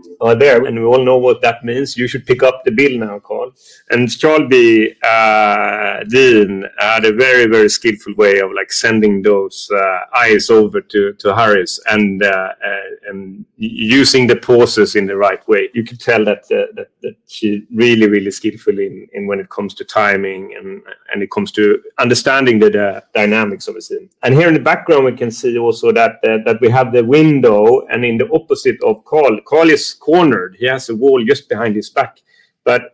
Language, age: English, 30-49